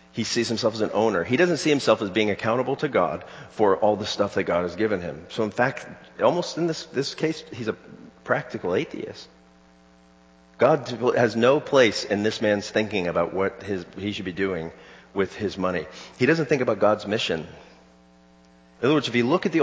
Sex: male